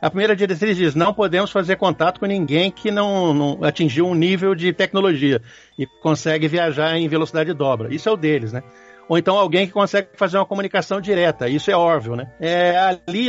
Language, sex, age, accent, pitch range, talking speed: Portuguese, male, 60-79, Brazilian, 155-205 Hz, 200 wpm